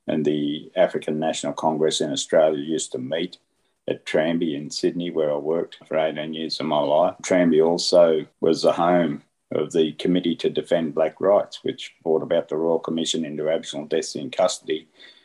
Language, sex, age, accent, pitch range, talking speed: English, male, 50-69, Australian, 85-100 Hz, 180 wpm